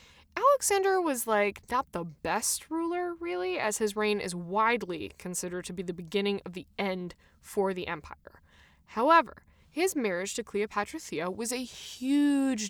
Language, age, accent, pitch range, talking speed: English, 10-29, American, 195-315 Hz, 155 wpm